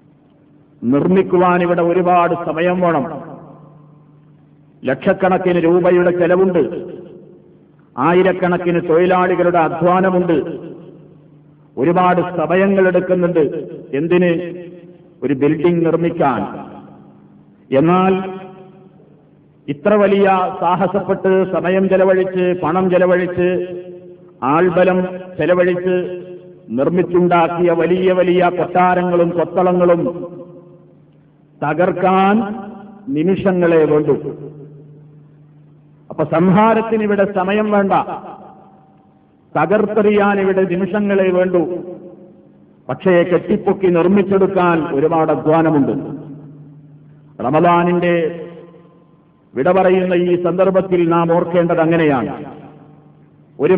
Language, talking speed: Malayalam, 60 wpm